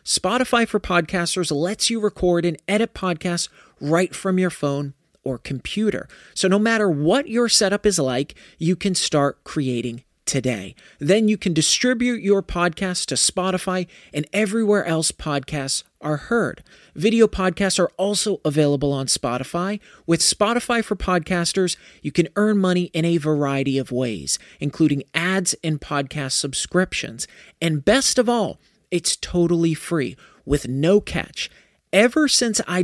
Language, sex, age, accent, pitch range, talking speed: English, male, 40-59, American, 155-200 Hz, 145 wpm